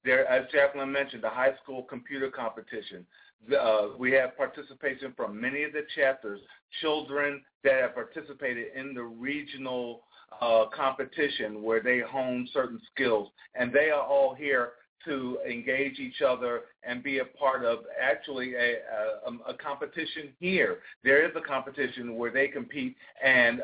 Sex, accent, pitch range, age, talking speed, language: male, American, 110-140 Hz, 50-69, 155 wpm, English